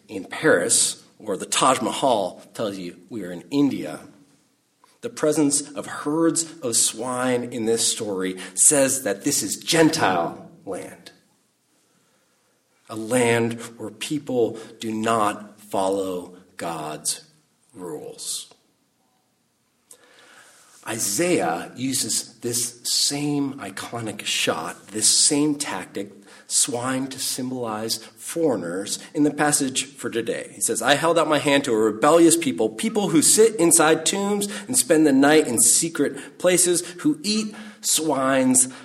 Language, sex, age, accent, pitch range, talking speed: English, male, 40-59, American, 110-155 Hz, 125 wpm